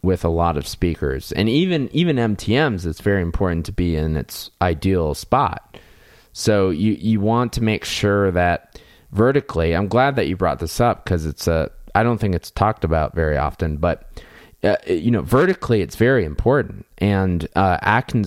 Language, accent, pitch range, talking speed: English, American, 80-100 Hz, 180 wpm